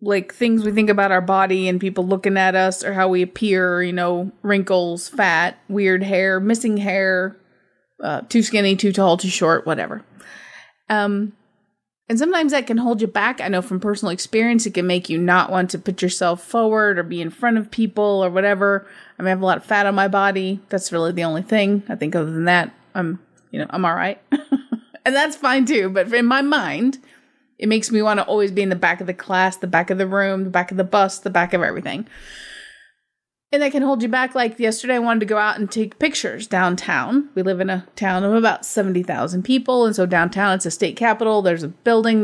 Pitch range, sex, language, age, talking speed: 185-230 Hz, female, English, 30-49, 230 wpm